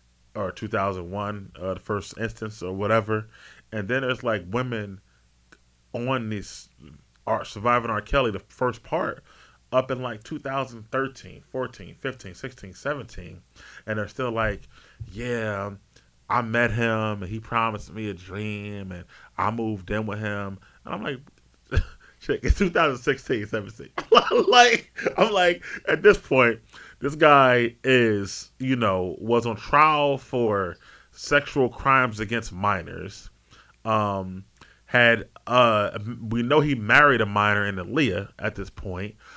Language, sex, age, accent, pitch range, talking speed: English, male, 30-49, American, 105-135 Hz, 135 wpm